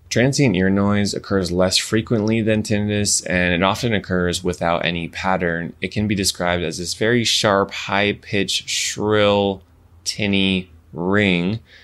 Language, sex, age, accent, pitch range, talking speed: English, male, 20-39, American, 85-100 Hz, 135 wpm